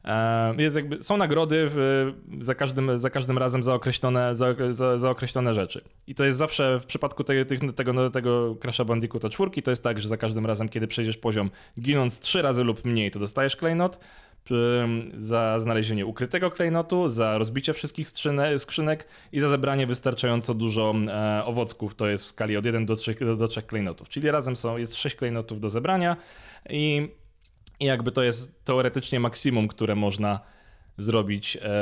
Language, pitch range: Polish, 110-135 Hz